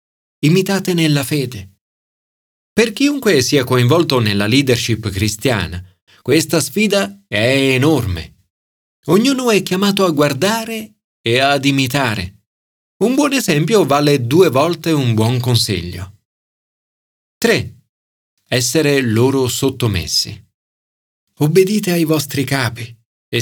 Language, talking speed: Italian, 100 wpm